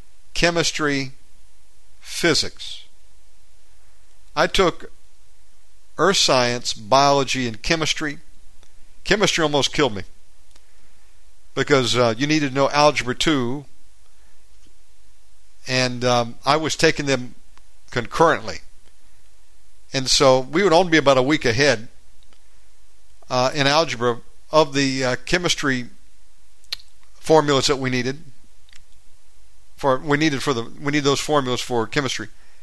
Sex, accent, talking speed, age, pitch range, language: male, American, 110 wpm, 50-69, 100-145 Hz, English